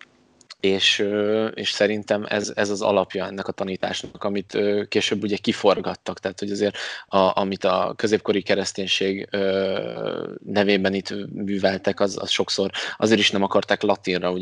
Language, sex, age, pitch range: Hungarian, male, 20-39, 95-100 Hz